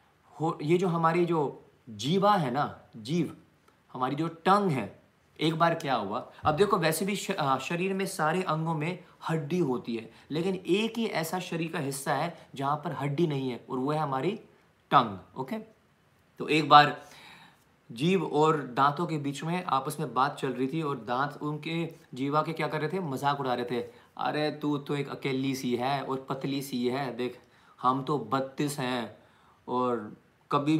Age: 30-49